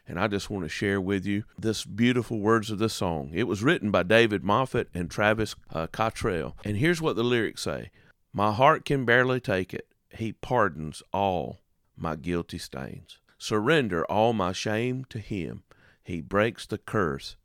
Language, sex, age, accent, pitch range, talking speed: English, male, 40-59, American, 90-115 Hz, 180 wpm